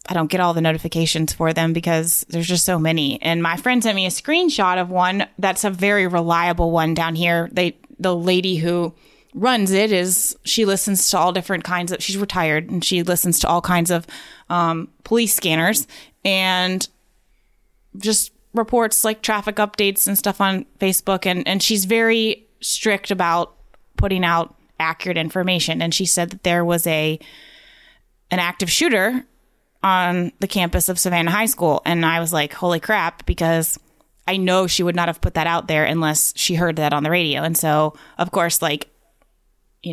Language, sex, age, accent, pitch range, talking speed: English, female, 20-39, American, 165-195 Hz, 185 wpm